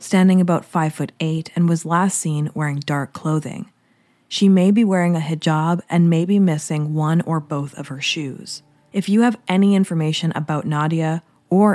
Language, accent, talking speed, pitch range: English, American, 175 wpm, 155-195 Hz